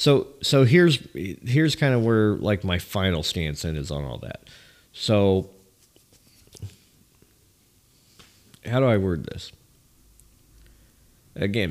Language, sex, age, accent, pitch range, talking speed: English, male, 40-59, American, 90-125 Hz, 120 wpm